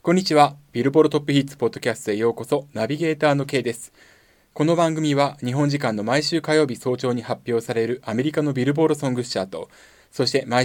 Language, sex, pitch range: Japanese, male, 115-155 Hz